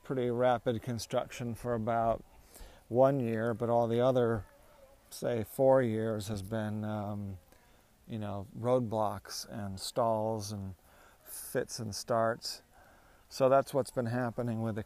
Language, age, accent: English, 40-59, American